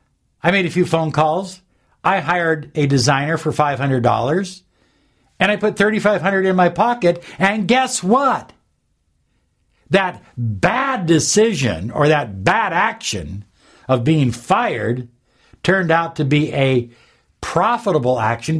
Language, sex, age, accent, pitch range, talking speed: English, male, 60-79, American, 120-175 Hz, 125 wpm